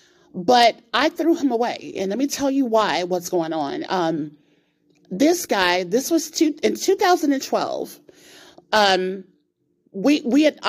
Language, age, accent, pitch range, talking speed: English, 30-49, American, 180-280 Hz, 145 wpm